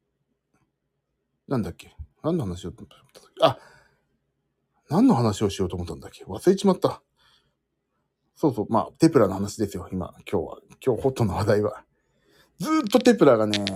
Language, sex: Japanese, male